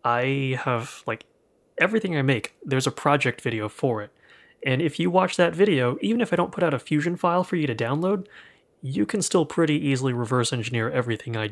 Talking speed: 210 wpm